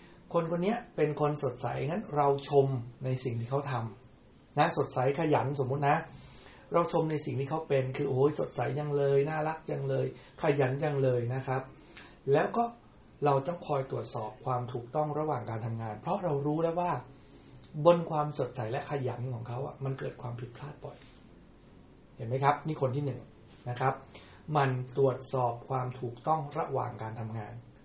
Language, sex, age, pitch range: English, male, 60-79, 125-150 Hz